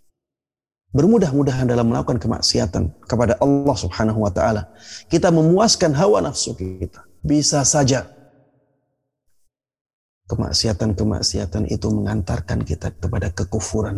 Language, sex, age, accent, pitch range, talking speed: Indonesian, male, 30-49, native, 95-140 Hz, 95 wpm